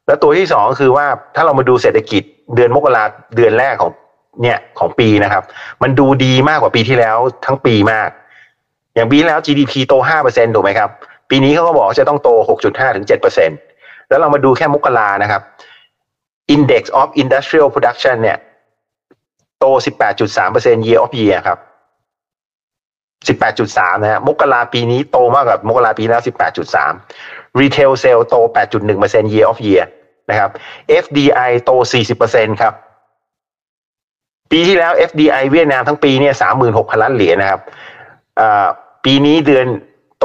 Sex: male